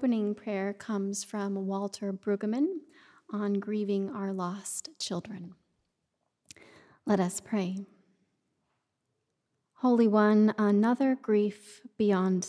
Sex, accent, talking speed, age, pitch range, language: female, American, 90 wpm, 30-49, 195-230 Hz, English